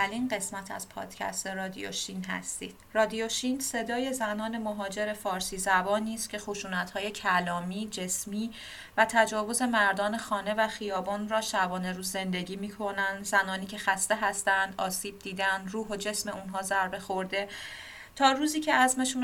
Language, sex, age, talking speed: Persian, female, 30-49, 135 wpm